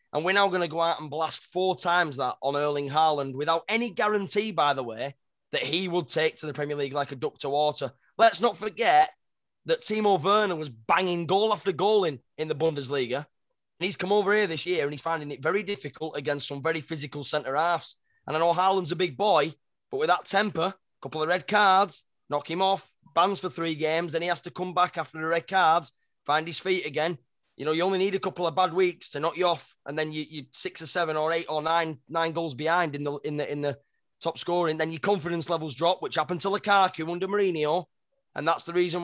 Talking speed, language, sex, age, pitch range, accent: 240 wpm, English, male, 20-39, 155-190 Hz, British